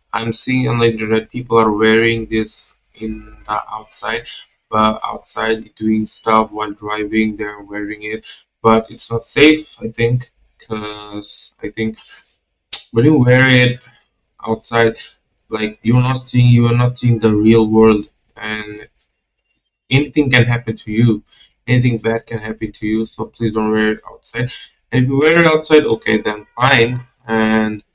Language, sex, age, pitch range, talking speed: English, male, 20-39, 110-120 Hz, 155 wpm